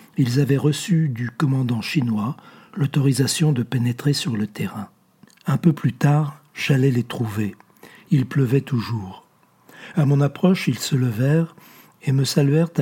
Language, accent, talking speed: French, French, 145 wpm